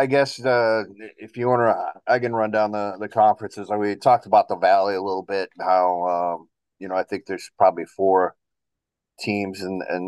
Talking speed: 215 wpm